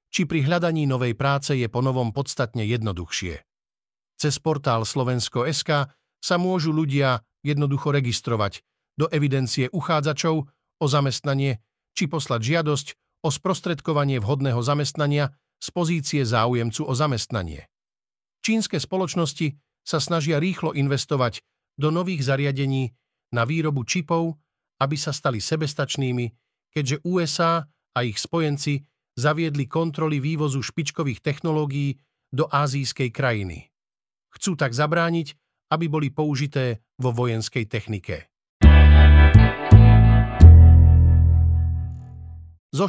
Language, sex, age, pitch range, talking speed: Slovak, male, 50-69, 125-160 Hz, 105 wpm